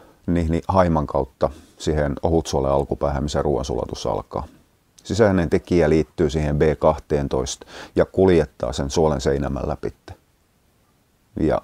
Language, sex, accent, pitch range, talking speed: Finnish, male, native, 70-85 Hz, 110 wpm